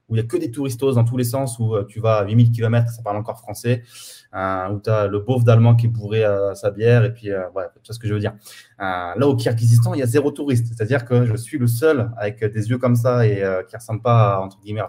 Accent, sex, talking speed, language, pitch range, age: French, male, 290 wpm, French, 105-120 Hz, 20-39